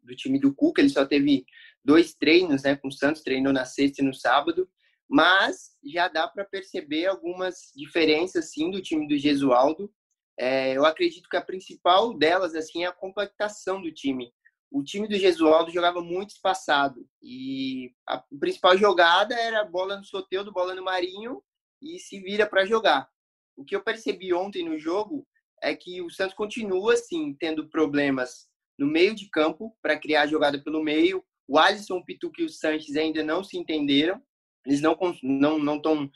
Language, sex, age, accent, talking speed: Portuguese, male, 20-39, Brazilian, 180 wpm